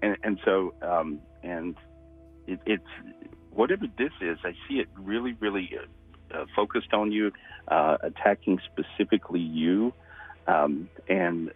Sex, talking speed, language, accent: male, 135 wpm, English, American